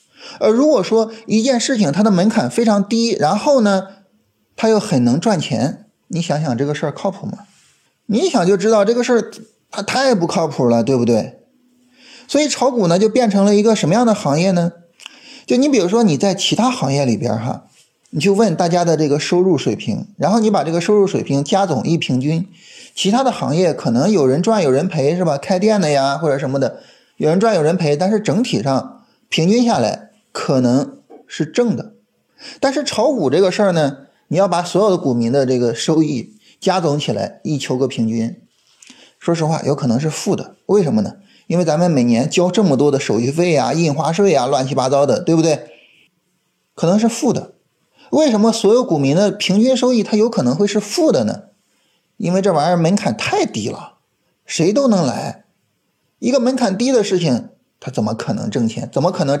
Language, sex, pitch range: Chinese, male, 155-225 Hz